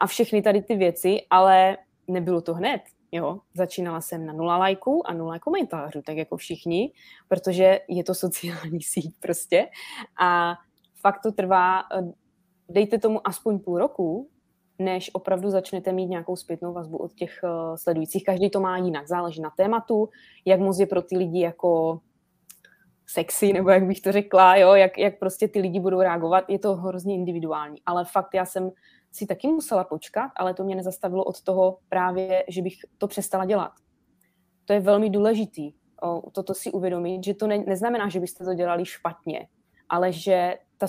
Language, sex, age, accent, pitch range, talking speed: Czech, female, 20-39, native, 175-200 Hz, 170 wpm